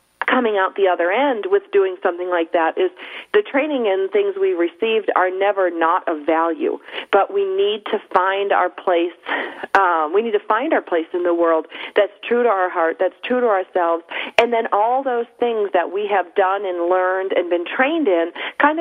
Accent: American